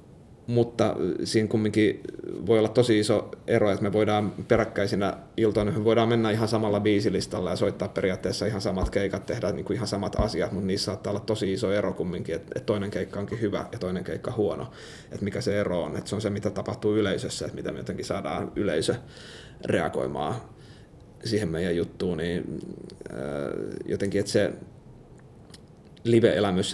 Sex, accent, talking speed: male, native, 165 wpm